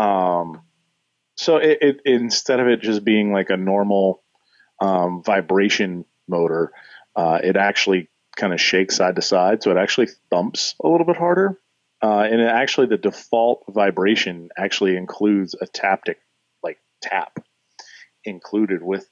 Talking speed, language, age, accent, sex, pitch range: 150 wpm, English, 30-49, American, male, 90-110 Hz